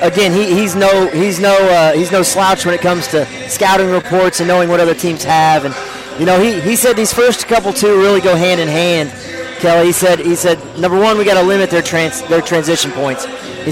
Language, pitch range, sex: English, 165-195 Hz, male